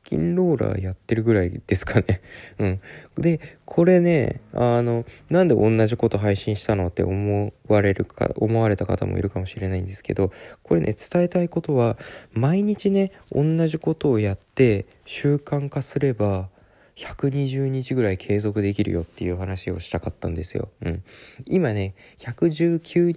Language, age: Japanese, 20-39